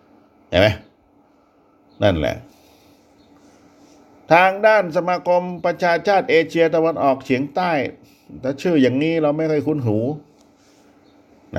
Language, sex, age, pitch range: Thai, male, 50-69, 105-140 Hz